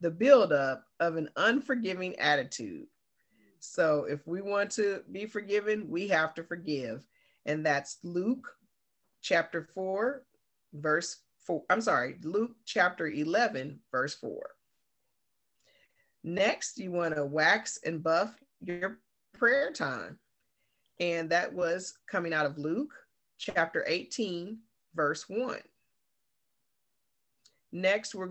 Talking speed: 115 wpm